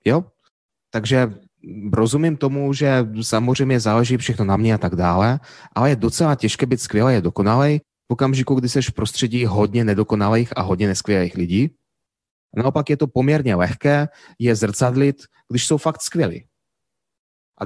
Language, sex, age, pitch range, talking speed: Czech, male, 30-49, 105-135 Hz, 155 wpm